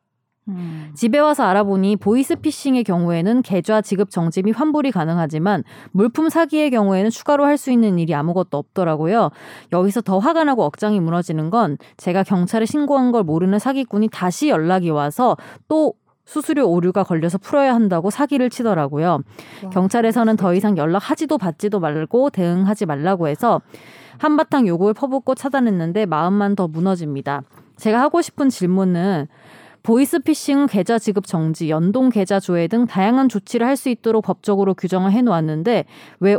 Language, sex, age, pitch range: Korean, female, 20-39, 180-250 Hz